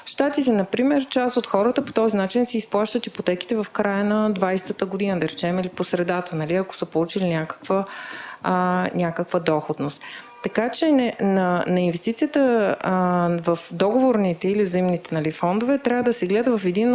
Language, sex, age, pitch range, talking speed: Bulgarian, female, 30-49, 175-235 Hz, 165 wpm